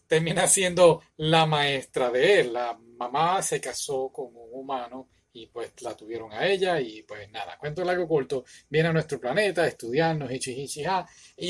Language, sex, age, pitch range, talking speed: Spanish, male, 30-49, 135-200 Hz, 165 wpm